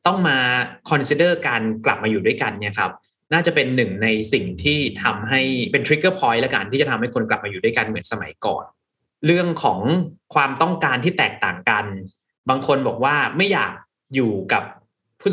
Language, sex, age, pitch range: Thai, male, 30-49, 115-165 Hz